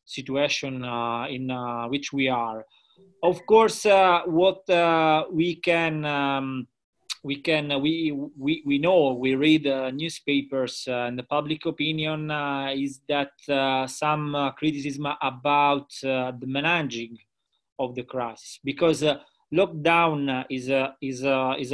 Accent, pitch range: Italian, 135-160 Hz